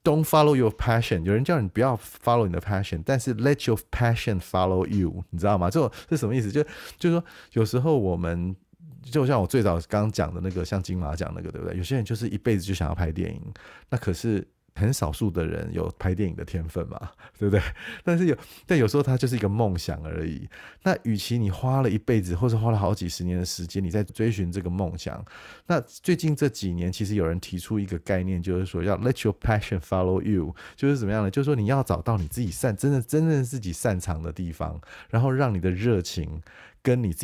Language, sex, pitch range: Chinese, male, 90-120 Hz